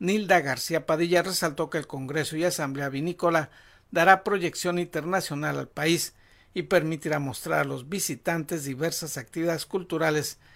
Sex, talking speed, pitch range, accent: male, 135 wpm, 150-185 Hz, Mexican